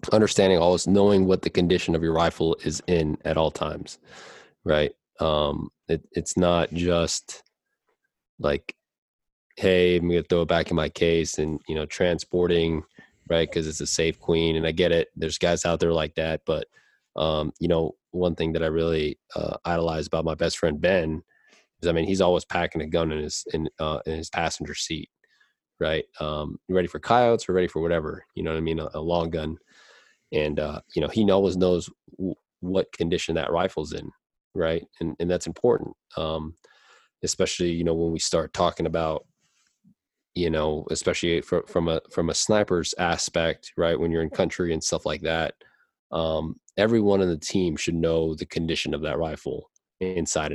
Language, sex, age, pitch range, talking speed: English, male, 20-39, 80-90 Hz, 190 wpm